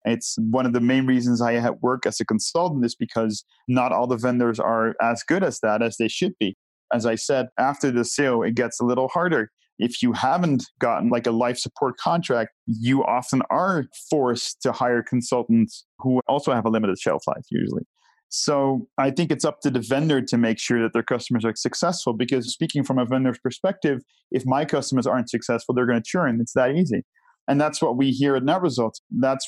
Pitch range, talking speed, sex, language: 120-140 Hz, 210 wpm, male, English